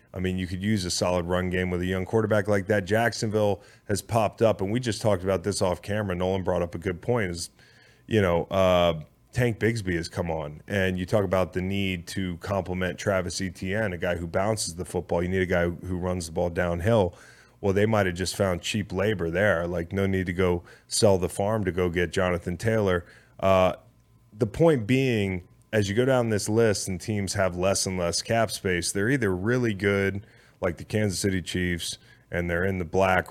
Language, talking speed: English, 220 wpm